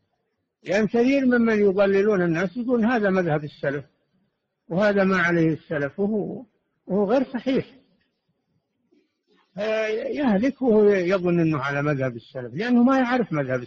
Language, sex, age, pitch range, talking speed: Arabic, male, 60-79, 155-210 Hz, 125 wpm